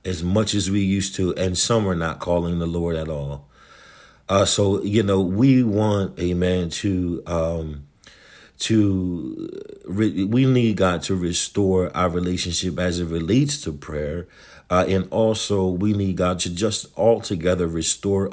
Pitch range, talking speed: 85-100 Hz, 160 wpm